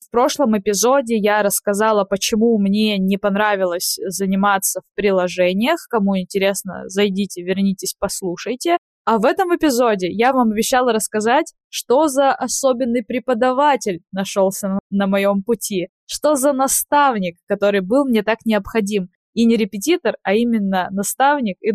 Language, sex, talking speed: Russian, female, 130 wpm